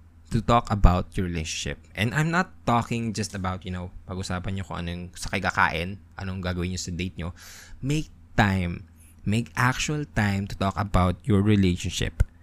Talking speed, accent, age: 170 wpm, Filipino, 20-39